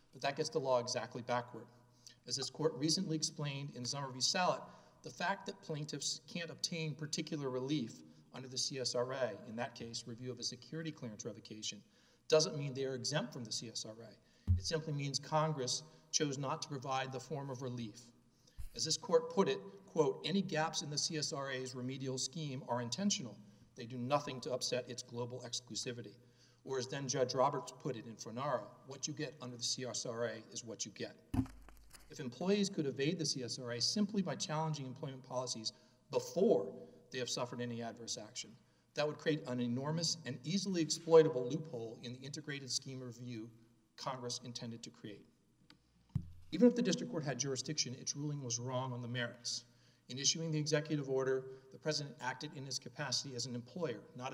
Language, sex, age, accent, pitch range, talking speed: English, male, 40-59, American, 120-155 Hz, 180 wpm